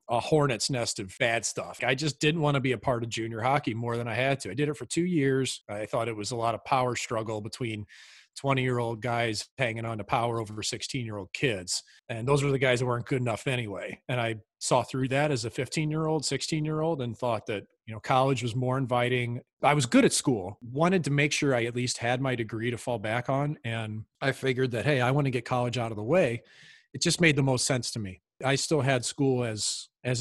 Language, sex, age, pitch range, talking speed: English, male, 40-59, 115-145 Hz, 240 wpm